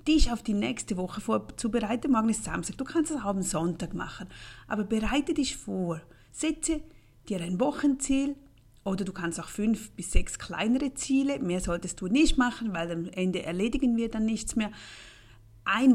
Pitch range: 170-235 Hz